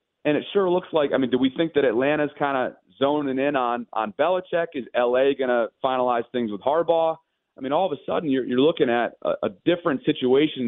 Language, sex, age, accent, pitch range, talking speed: English, male, 30-49, American, 110-135 Hz, 230 wpm